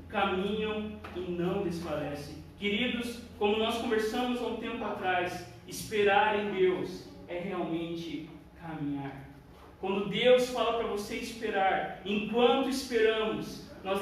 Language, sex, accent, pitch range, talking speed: Portuguese, male, Brazilian, 200-250 Hz, 115 wpm